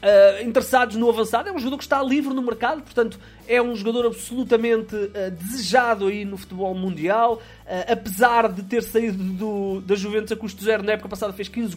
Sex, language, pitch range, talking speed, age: male, Portuguese, 155-225 Hz, 200 wpm, 20-39